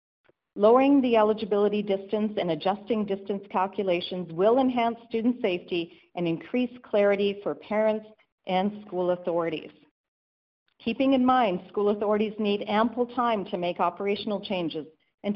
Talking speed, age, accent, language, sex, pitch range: 130 wpm, 50-69, American, English, female, 180-230 Hz